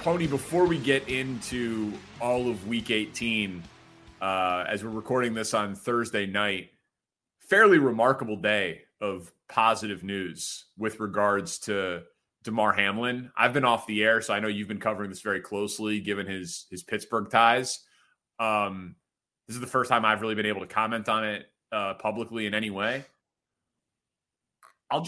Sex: male